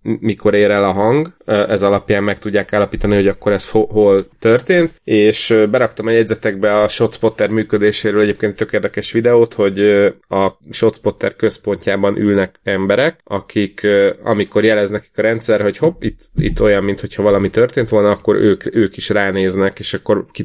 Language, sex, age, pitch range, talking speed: Hungarian, male, 30-49, 100-110 Hz, 160 wpm